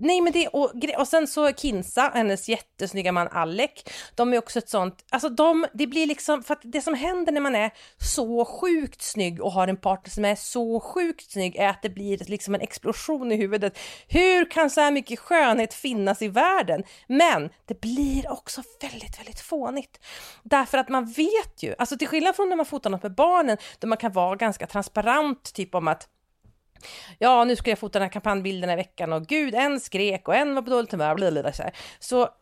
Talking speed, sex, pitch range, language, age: 205 wpm, female, 195-290 Hz, Swedish, 40-59